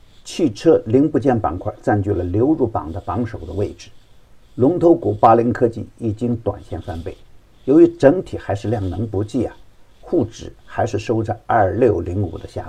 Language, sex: Chinese, male